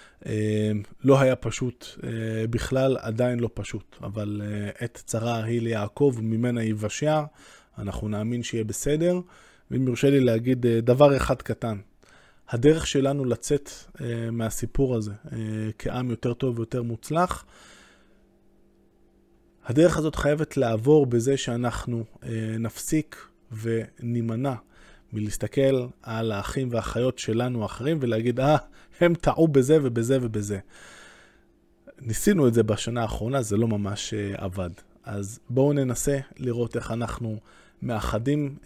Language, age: Hebrew, 20-39